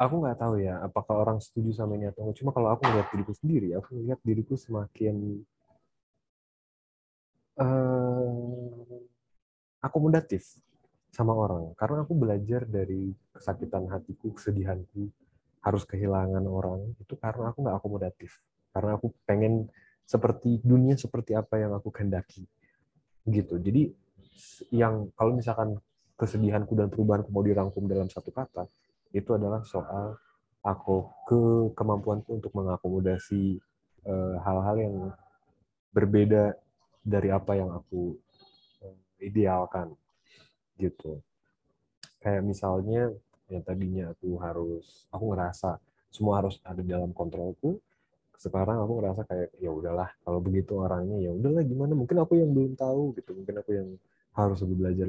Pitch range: 95-115 Hz